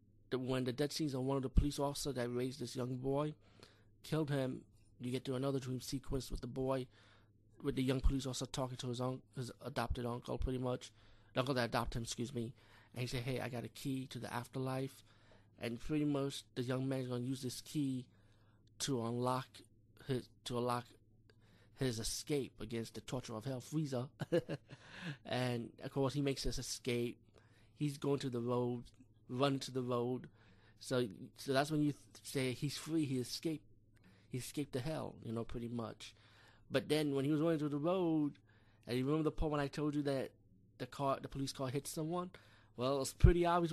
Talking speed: 205 wpm